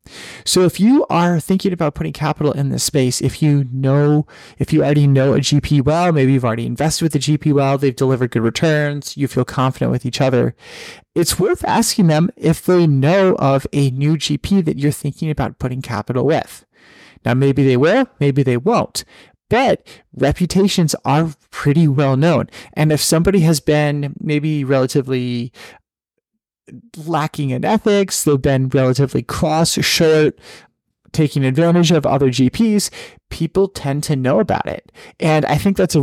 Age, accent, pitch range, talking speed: 30-49, American, 135-165 Hz, 170 wpm